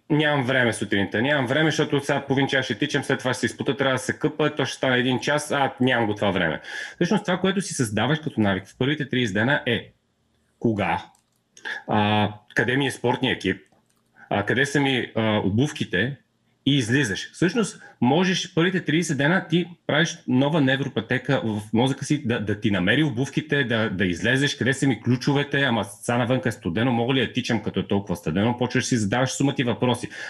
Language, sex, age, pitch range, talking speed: Bulgarian, male, 30-49, 115-150 Hz, 190 wpm